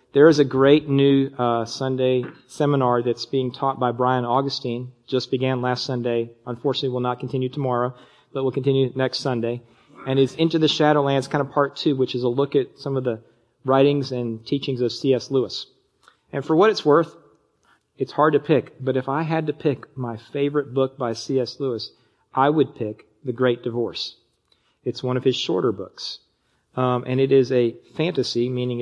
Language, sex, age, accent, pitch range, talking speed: English, male, 40-59, American, 125-140 Hz, 190 wpm